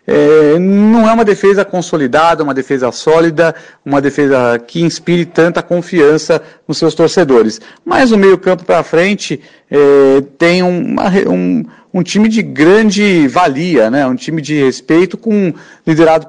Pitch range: 140-175 Hz